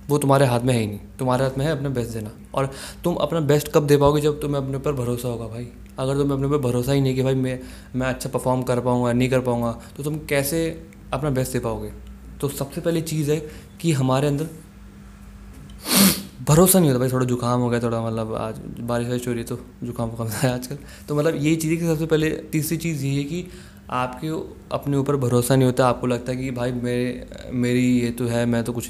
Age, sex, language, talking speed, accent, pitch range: 20-39, male, Hindi, 235 wpm, native, 120-145 Hz